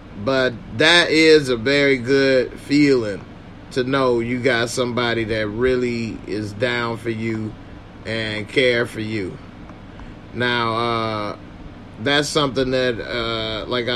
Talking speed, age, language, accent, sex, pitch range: 125 wpm, 30-49, English, American, male, 120-145 Hz